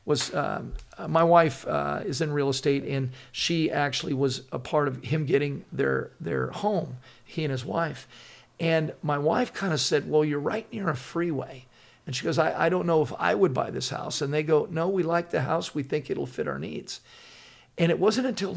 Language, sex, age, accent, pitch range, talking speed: English, male, 50-69, American, 130-160 Hz, 220 wpm